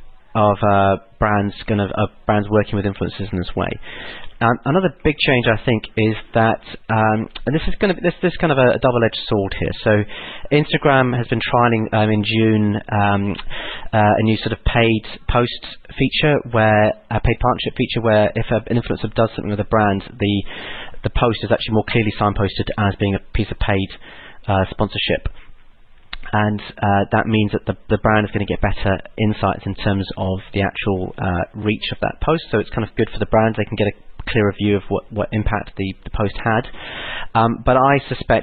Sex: male